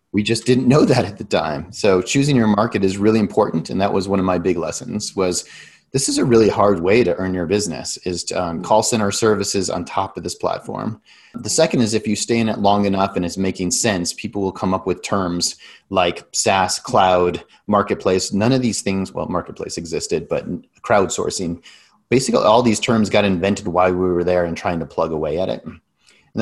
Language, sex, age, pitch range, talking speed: English, male, 30-49, 90-110 Hz, 215 wpm